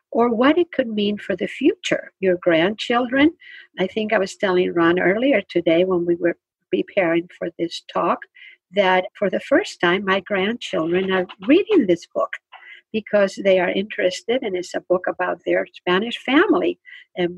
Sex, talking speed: female, 170 wpm